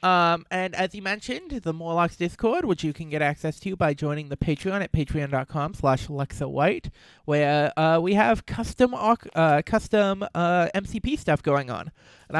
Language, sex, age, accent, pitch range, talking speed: English, male, 30-49, American, 150-185 Hz, 170 wpm